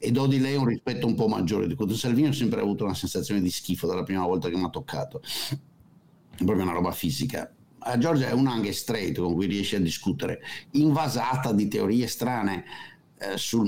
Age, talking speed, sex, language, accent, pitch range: 50-69, 210 wpm, male, Italian, native, 100-135 Hz